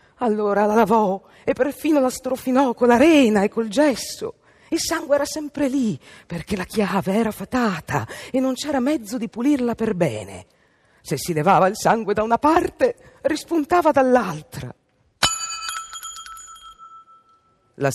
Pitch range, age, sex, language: 160-265 Hz, 50-69, female, Italian